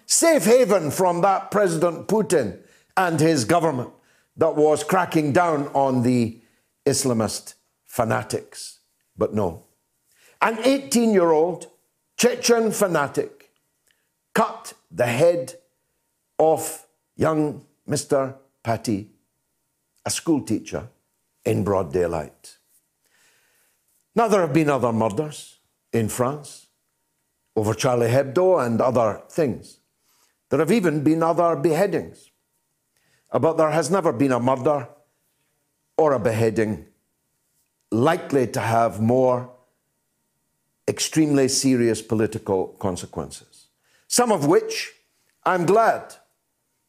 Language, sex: English, male